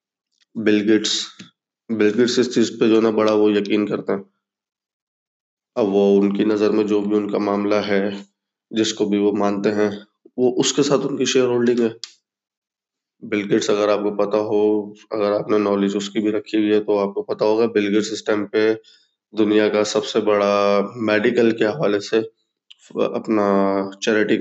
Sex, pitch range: male, 105-115 Hz